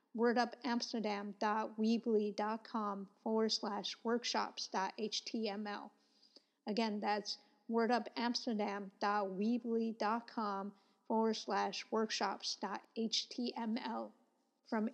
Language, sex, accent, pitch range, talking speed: English, female, American, 210-235 Hz, 45 wpm